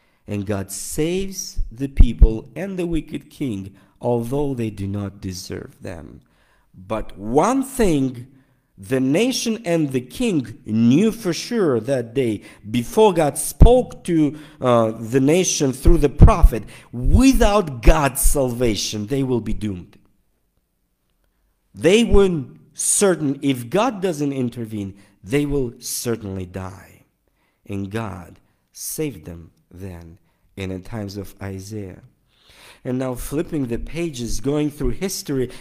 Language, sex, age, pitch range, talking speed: English, male, 50-69, 110-155 Hz, 125 wpm